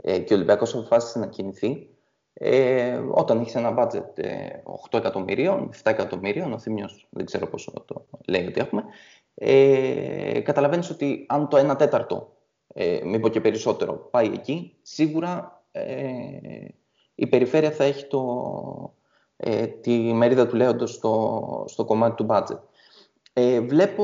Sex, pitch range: male, 125-170 Hz